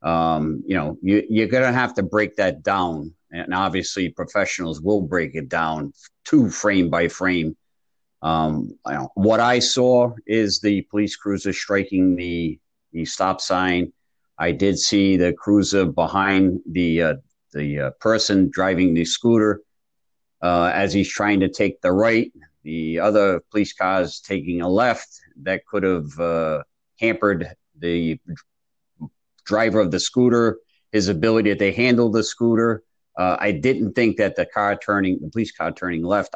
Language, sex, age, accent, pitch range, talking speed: English, male, 50-69, American, 85-110 Hz, 160 wpm